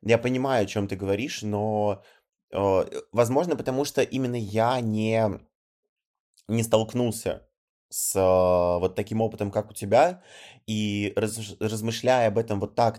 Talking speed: 140 wpm